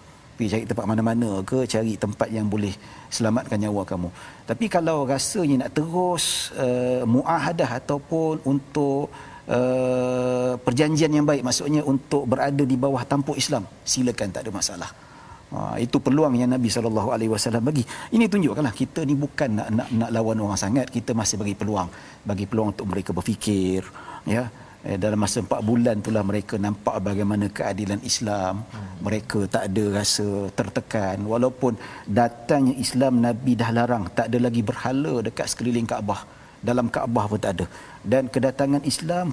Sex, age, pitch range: male, 50-69, 110-140 Hz